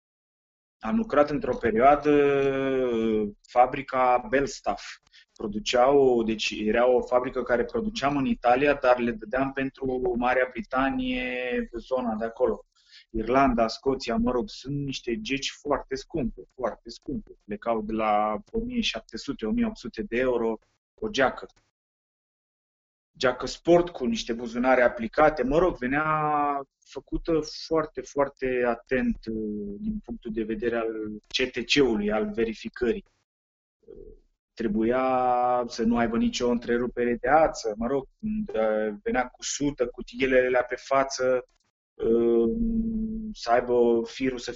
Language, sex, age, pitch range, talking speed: Romanian, male, 30-49, 115-140 Hz, 115 wpm